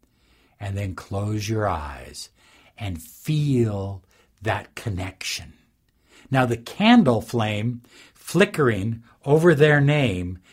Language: English